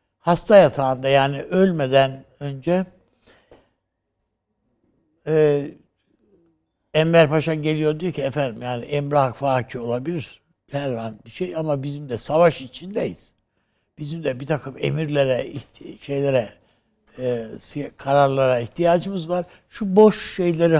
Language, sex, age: Turkish, male, 60-79